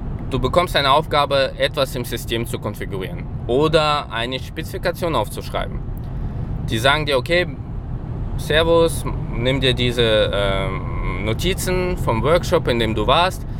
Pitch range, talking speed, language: 115-135 Hz, 125 wpm, German